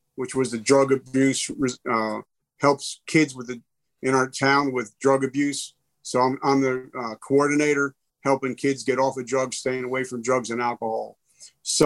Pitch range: 130-155 Hz